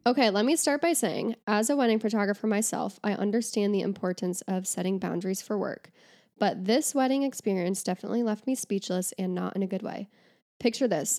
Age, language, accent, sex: 10-29, English, American, female